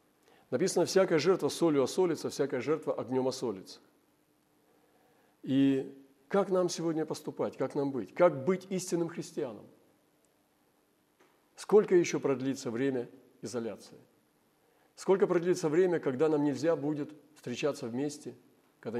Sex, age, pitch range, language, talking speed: male, 40-59, 125-155 Hz, Russian, 115 wpm